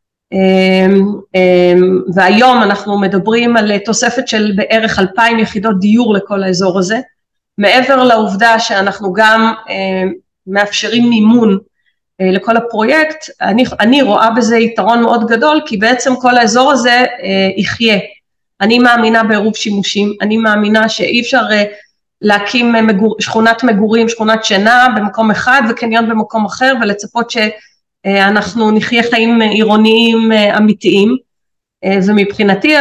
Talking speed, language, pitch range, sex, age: 125 wpm, Hebrew, 195-235 Hz, female, 30-49